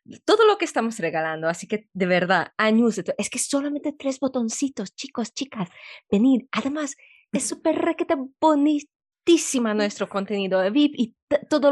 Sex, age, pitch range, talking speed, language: female, 20-39, 185-245 Hz, 155 wpm, Spanish